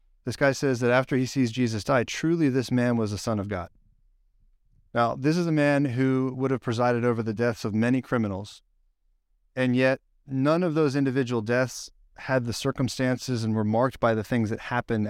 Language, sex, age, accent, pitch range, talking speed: English, male, 30-49, American, 110-130 Hz, 200 wpm